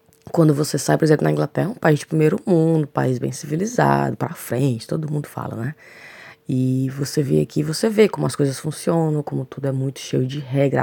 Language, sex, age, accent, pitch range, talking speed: Portuguese, female, 20-39, Brazilian, 125-155 Hz, 215 wpm